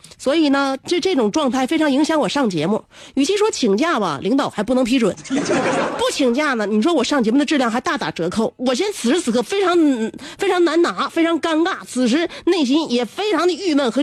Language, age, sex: Chinese, 30-49, female